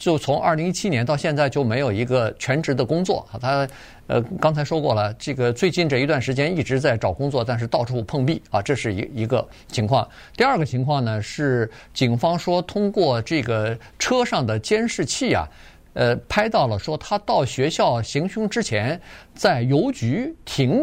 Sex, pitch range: male, 120-165 Hz